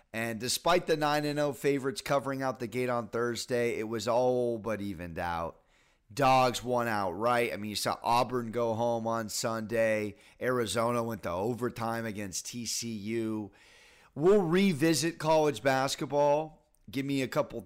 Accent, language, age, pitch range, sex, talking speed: American, English, 30-49, 115-160 Hz, male, 150 wpm